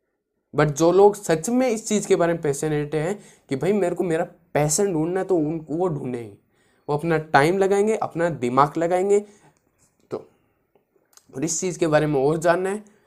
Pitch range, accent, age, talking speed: 150-210 Hz, native, 20-39, 190 wpm